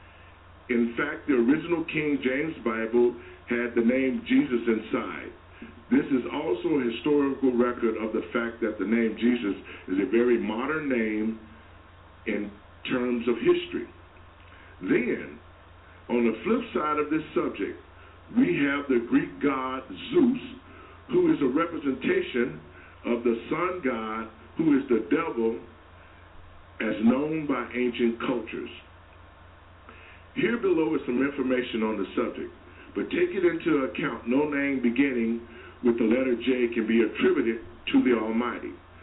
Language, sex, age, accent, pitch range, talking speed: English, male, 50-69, American, 90-130 Hz, 140 wpm